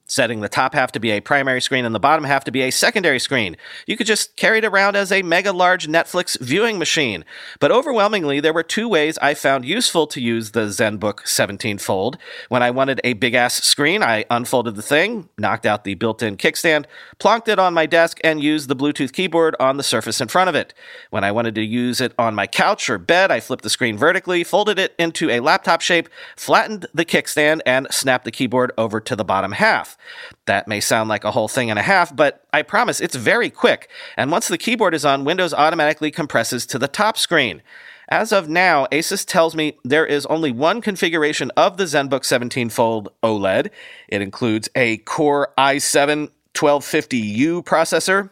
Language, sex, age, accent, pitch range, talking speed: English, male, 40-59, American, 125-170 Hz, 200 wpm